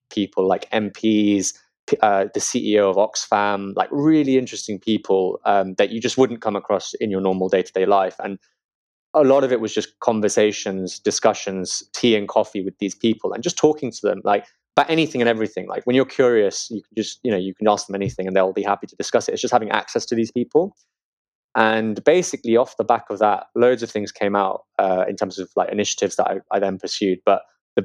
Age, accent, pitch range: 20-39, British, 95-125 Hz